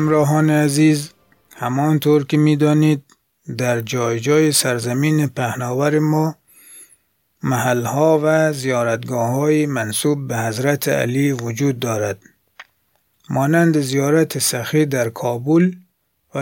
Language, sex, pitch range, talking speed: Persian, male, 120-155 Hz, 95 wpm